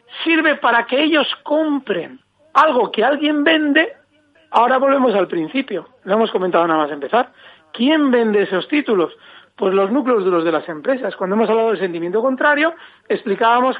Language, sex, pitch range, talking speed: Spanish, male, 195-285 Hz, 160 wpm